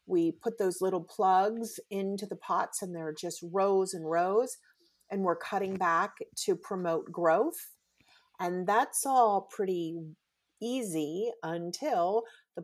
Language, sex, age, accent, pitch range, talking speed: English, female, 40-59, American, 170-210 Hz, 135 wpm